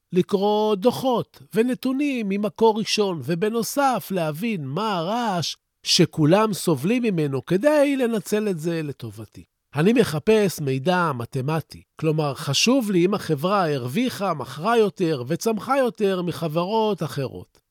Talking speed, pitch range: 110 wpm, 145-215 Hz